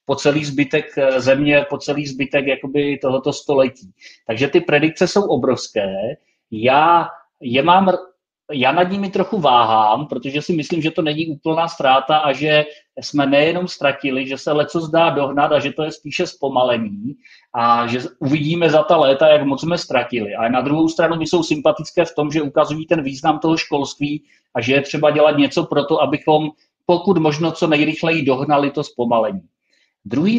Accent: native